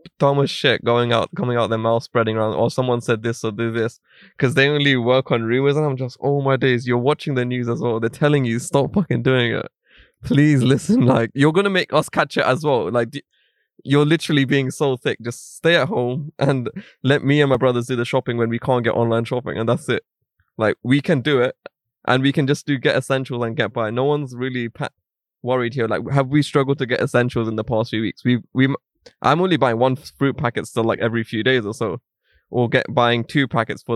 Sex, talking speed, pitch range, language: male, 240 wpm, 115-140 Hz, English